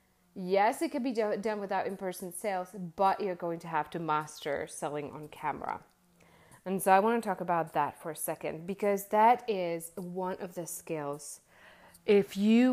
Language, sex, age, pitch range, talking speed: English, female, 30-49, 165-210 Hz, 180 wpm